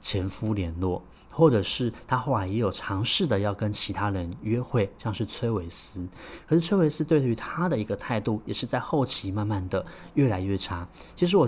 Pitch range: 100-135 Hz